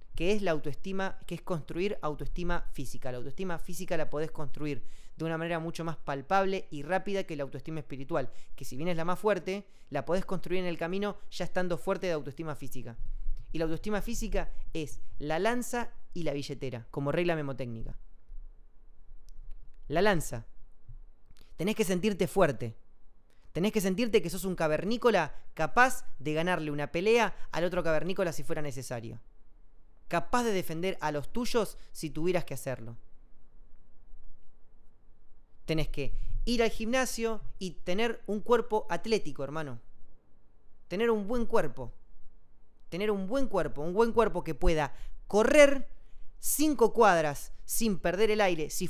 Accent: Argentinian